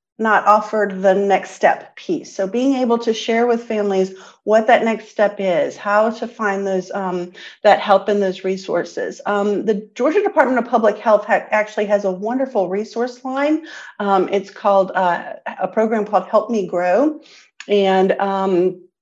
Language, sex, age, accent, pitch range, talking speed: English, female, 40-59, American, 195-230 Hz, 170 wpm